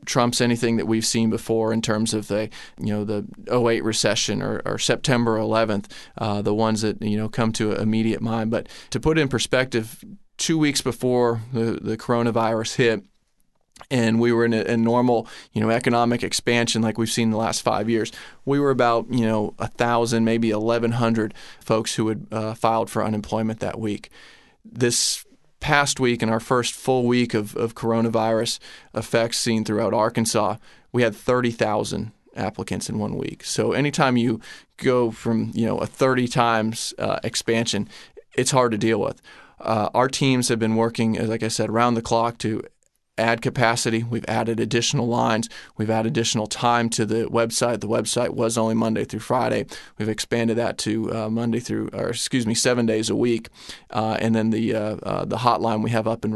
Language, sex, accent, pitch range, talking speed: English, male, American, 110-120 Hz, 180 wpm